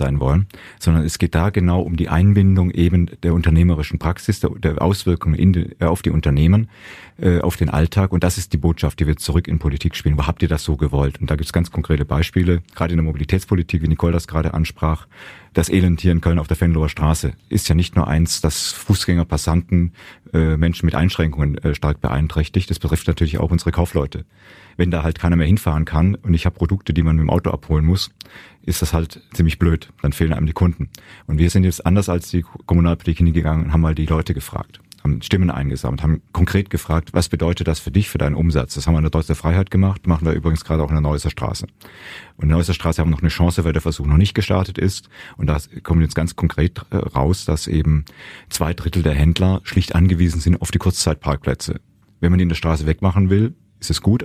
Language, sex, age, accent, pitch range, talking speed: German, male, 40-59, German, 80-90 Hz, 230 wpm